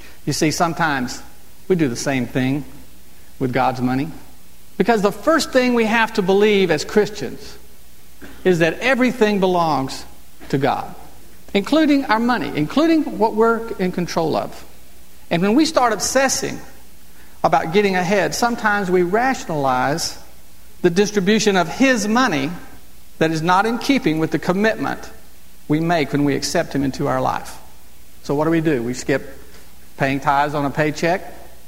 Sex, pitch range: male, 135-205 Hz